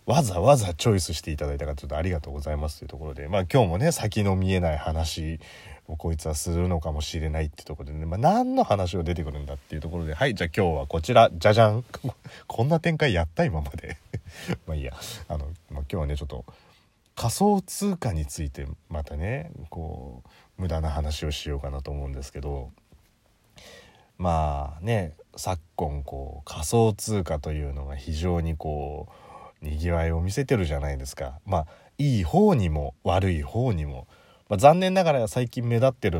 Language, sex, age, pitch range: Japanese, male, 30-49, 75-100 Hz